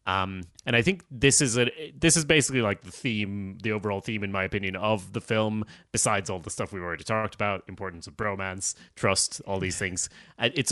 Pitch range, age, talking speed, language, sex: 100-120 Hz, 30-49, 215 wpm, English, male